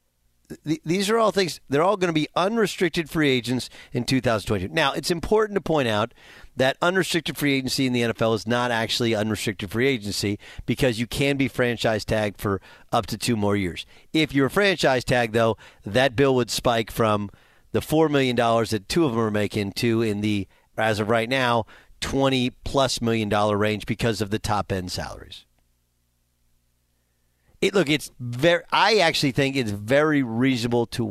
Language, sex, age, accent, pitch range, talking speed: English, male, 40-59, American, 100-140 Hz, 185 wpm